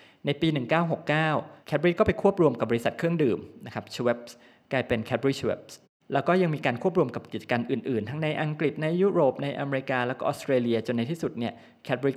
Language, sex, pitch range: Thai, male, 115-150 Hz